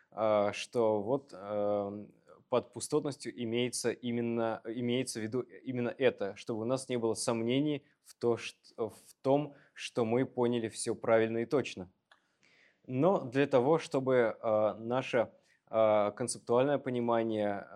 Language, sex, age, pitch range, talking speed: English, male, 20-39, 110-125 Hz, 120 wpm